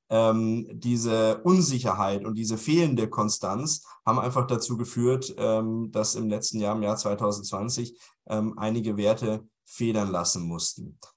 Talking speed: 135 wpm